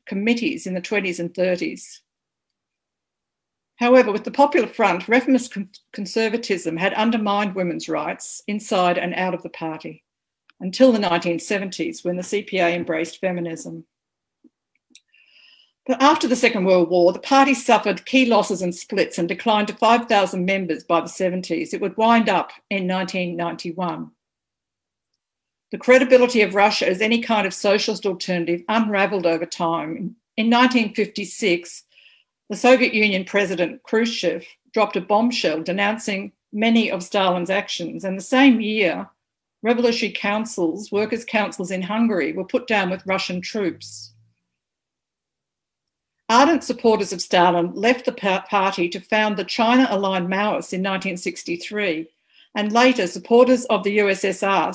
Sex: female